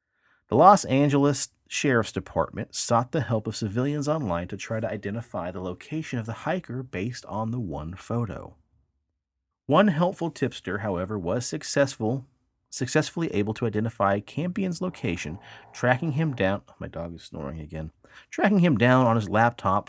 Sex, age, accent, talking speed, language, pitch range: male, 40-59, American, 155 wpm, English, 95-140 Hz